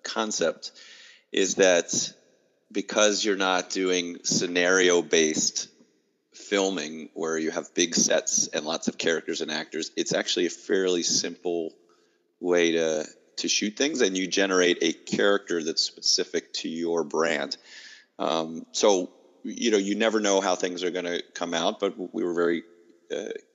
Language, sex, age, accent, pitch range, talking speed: English, male, 30-49, American, 85-100 Hz, 150 wpm